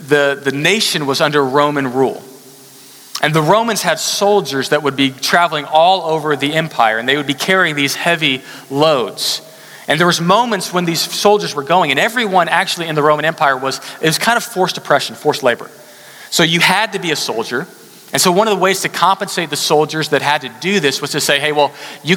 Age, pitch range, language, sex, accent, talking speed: 40-59, 140-185 Hz, English, male, American, 220 wpm